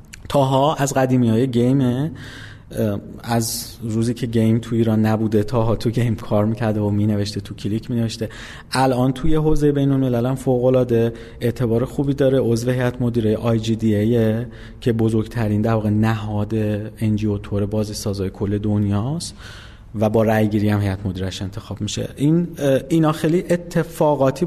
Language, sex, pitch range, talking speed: Persian, male, 110-145 Hz, 145 wpm